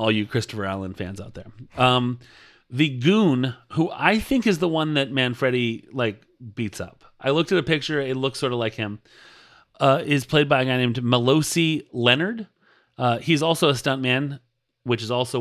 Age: 30-49